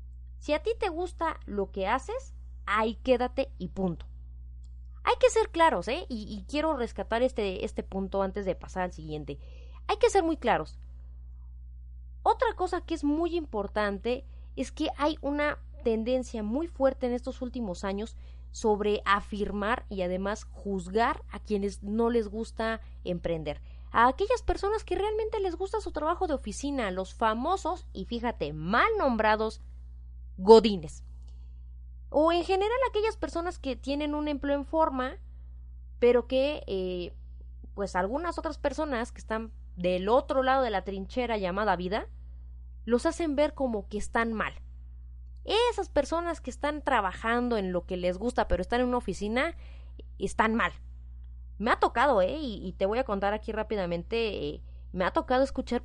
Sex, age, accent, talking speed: female, 30-49, Mexican, 160 wpm